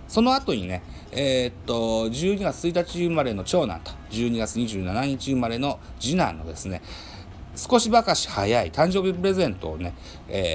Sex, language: male, Japanese